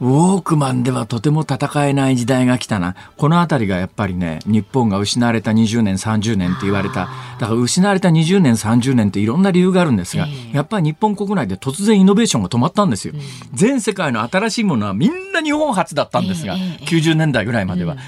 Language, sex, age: Japanese, male, 40-59